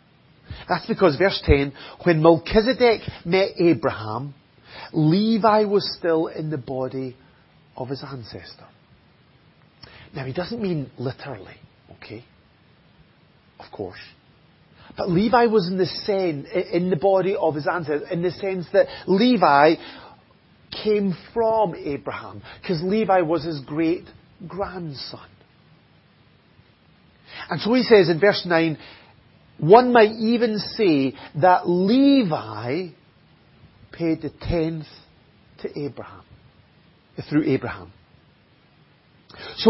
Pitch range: 145-195 Hz